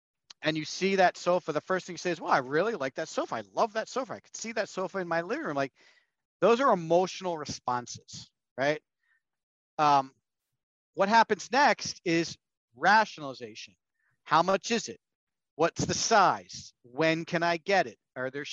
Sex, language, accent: male, English, American